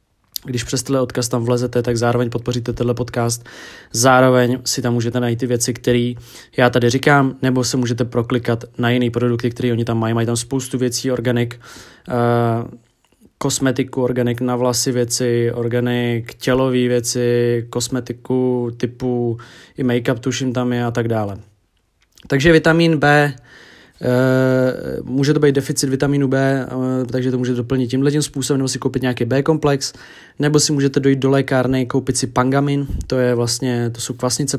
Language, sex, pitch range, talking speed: Czech, male, 120-135 Hz, 165 wpm